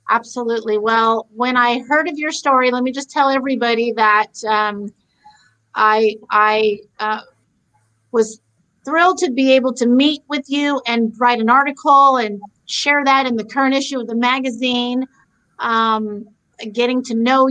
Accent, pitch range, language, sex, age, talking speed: American, 220-265 Hz, English, female, 40-59, 155 wpm